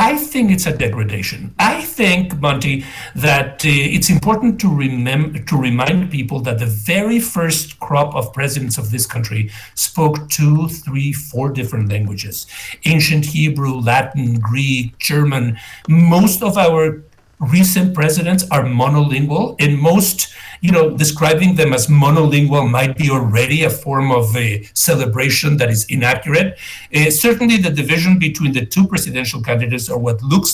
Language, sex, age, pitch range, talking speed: English, male, 60-79, 130-180 Hz, 150 wpm